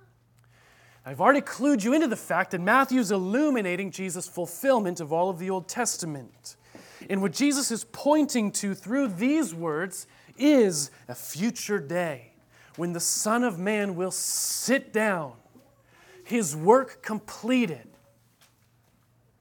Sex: male